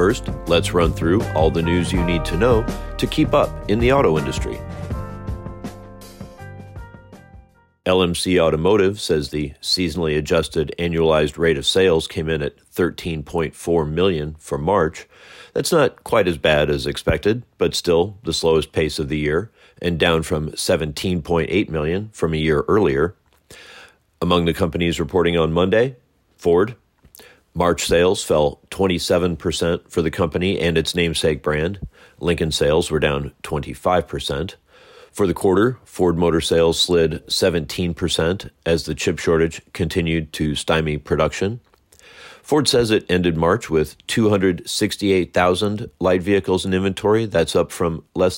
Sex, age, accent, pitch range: male, 40-59, American, 80-95 Hz